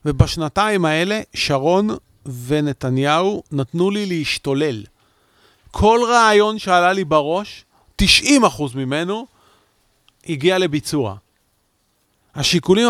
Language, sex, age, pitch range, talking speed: Hebrew, male, 40-59, 140-215 Hz, 80 wpm